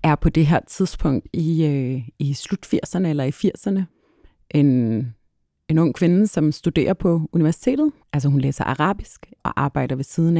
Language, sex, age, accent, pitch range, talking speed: Danish, female, 30-49, native, 135-170 Hz, 165 wpm